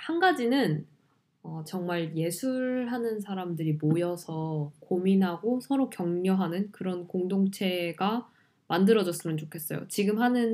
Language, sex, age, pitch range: Korean, female, 10-29, 160-225 Hz